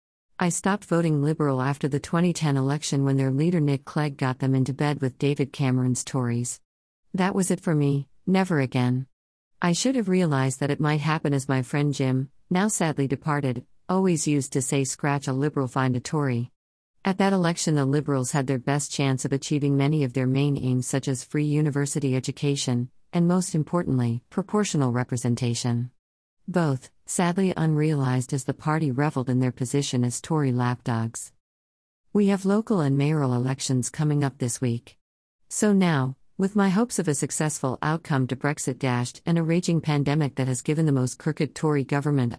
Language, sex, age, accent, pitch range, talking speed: English, female, 50-69, American, 130-160 Hz, 180 wpm